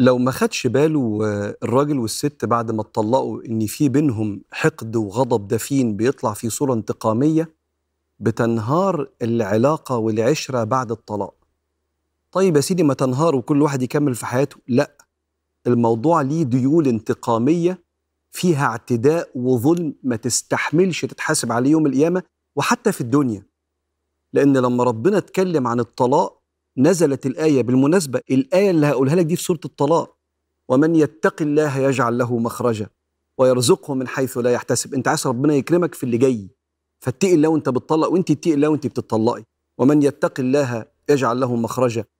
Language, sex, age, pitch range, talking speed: Arabic, male, 40-59, 115-150 Hz, 145 wpm